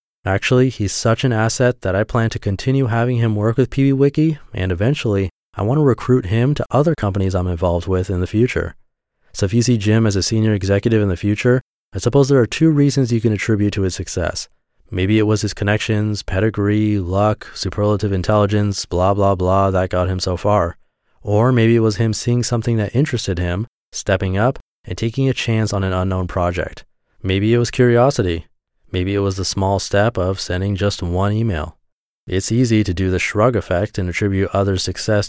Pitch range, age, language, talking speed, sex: 95-115 Hz, 20-39, English, 200 wpm, male